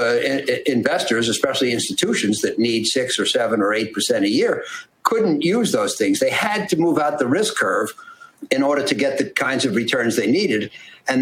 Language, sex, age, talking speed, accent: English, male, 50-69, 200 wpm, American